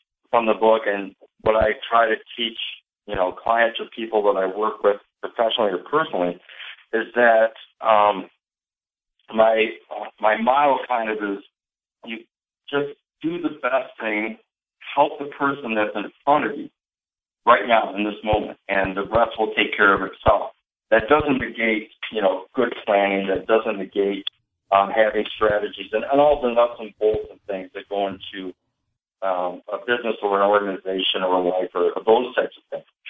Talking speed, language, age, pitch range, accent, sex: 175 wpm, English, 50-69, 100-125 Hz, American, male